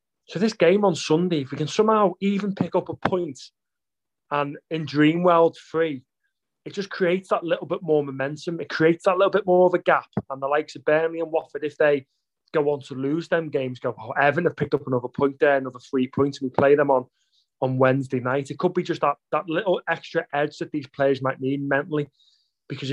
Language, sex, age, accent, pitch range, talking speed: English, male, 30-49, British, 135-160 Hz, 225 wpm